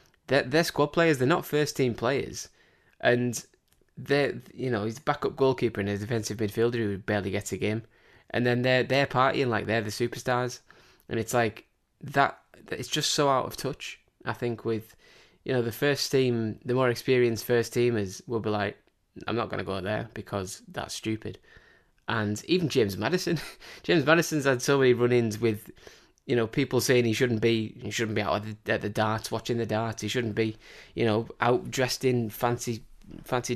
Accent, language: British, English